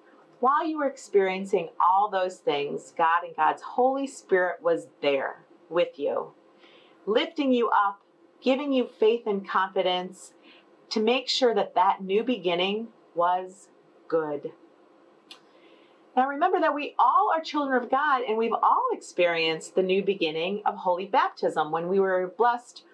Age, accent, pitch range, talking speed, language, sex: 40-59, American, 180-300 Hz, 145 wpm, English, female